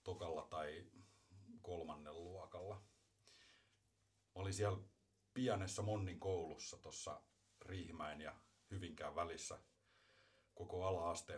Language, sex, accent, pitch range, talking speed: Finnish, male, native, 85-105 Hz, 90 wpm